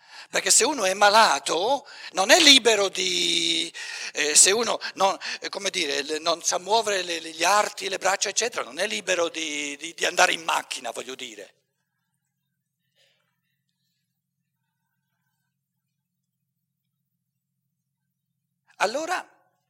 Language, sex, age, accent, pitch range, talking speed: Italian, male, 60-79, native, 165-275 Hz, 110 wpm